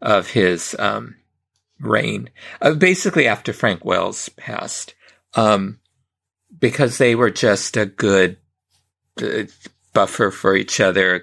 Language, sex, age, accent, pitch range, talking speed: English, male, 50-69, American, 105-150 Hz, 125 wpm